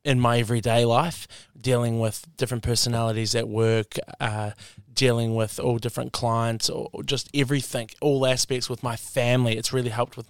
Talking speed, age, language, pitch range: 165 wpm, 20-39, English, 115-130 Hz